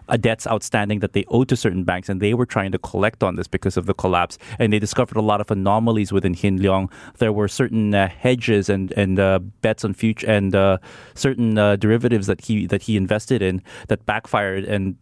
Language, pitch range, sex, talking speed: English, 100-125 Hz, male, 220 wpm